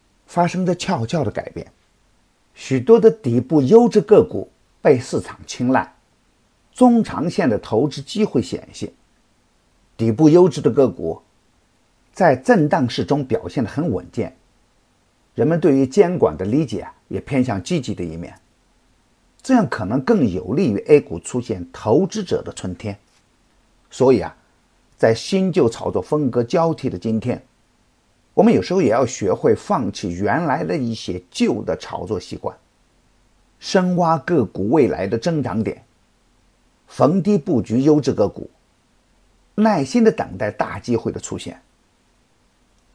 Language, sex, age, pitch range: Chinese, male, 50-69, 110-180 Hz